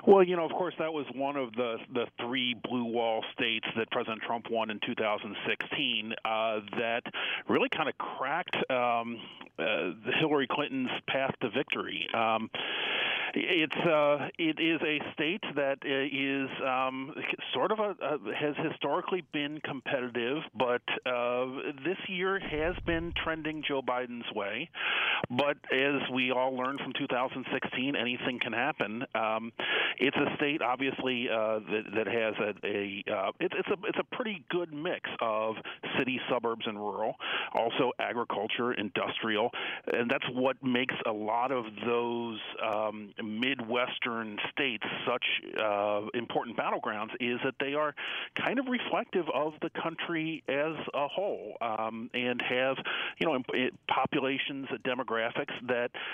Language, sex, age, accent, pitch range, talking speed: English, male, 40-59, American, 115-145 Hz, 150 wpm